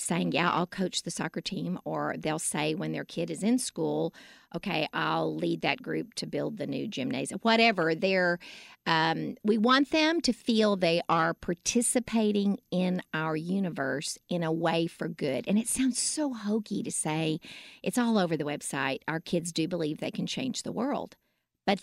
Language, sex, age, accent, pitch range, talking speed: English, female, 50-69, American, 165-215 Hz, 185 wpm